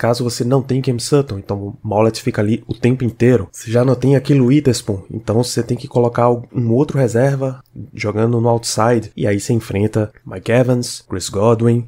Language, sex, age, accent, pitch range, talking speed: Portuguese, male, 20-39, Brazilian, 105-125 Hz, 195 wpm